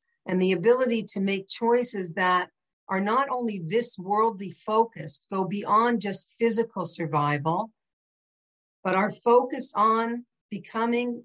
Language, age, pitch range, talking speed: English, 50-69, 185-225 Hz, 125 wpm